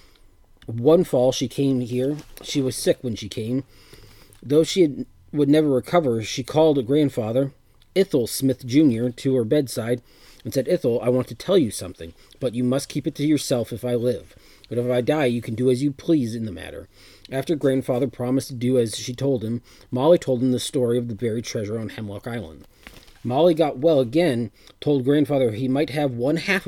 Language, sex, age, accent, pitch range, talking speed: English, male, 30-49, American, 110-145 Hz, 205 wpm